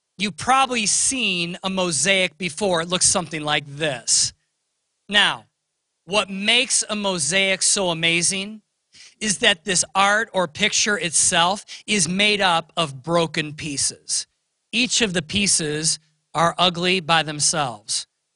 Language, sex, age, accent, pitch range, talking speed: English, male, 40-59, American, 160-210 Hz, 125 wpm